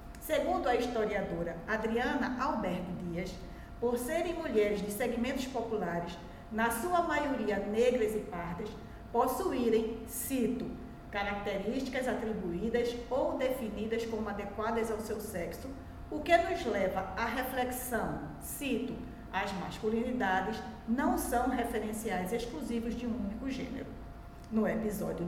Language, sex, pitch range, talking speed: Portuguese, female, 210-245 Hz, 115 wpm